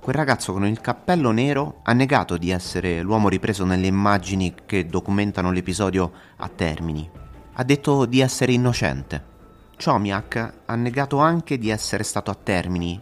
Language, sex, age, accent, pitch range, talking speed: Italian, male, 30-49, native, 85-115 Hz, 150 wpm